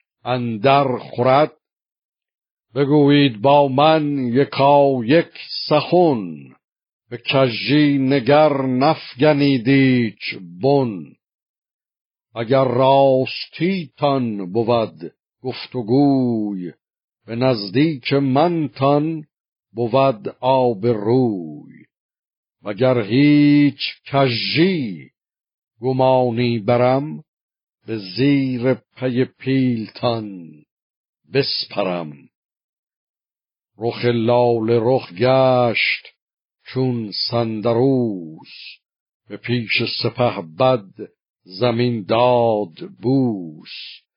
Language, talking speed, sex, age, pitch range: Persian, 65 wpm, male, 60-79, 115-135 Hz